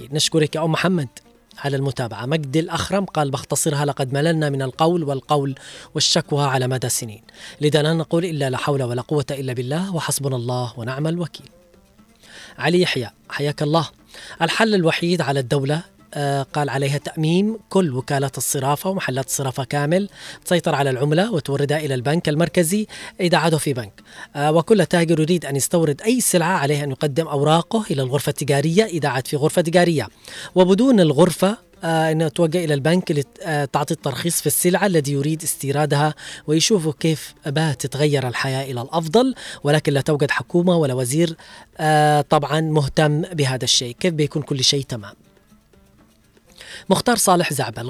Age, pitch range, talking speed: 20-39, 140-170 Hz, 150 wpm